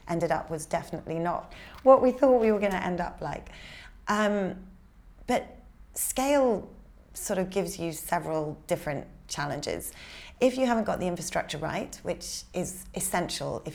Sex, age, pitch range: female, 30-49, 160-200 Hz